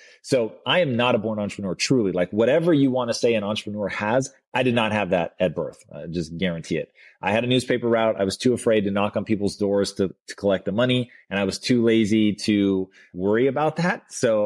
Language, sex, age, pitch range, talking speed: English, male, 30-49, 100-120 Hz, 235 wpm